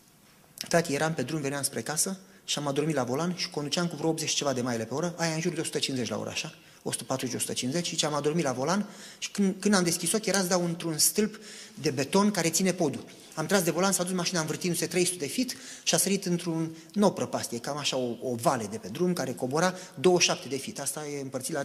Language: Romanian